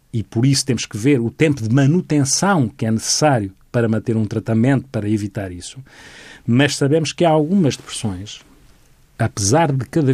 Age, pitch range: 40-59, 120-145 Hz